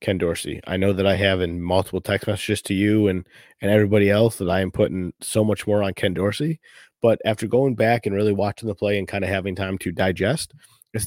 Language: English